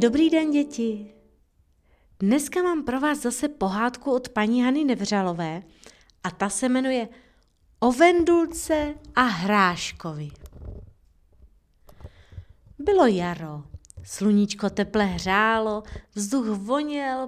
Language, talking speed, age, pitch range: Czech, 95 wpm, 30-49, 175-250 Hz